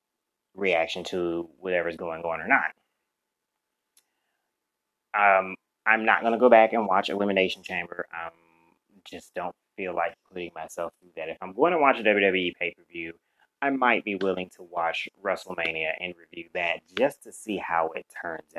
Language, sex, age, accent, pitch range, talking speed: English, male, 20-39, American, 85-100 Hz, 165 wpm